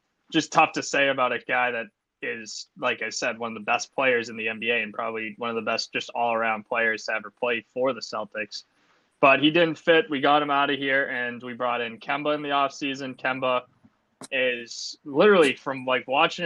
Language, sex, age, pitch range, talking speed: English, male, 20-39, 115-135 Hz, 220 wpm